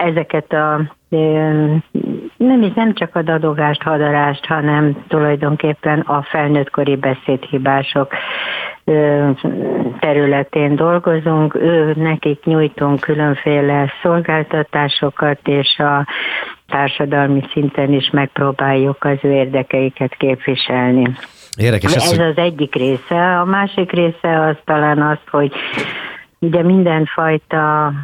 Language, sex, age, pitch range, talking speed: English, female, 60-79, 140-160 Hz, 95 wpm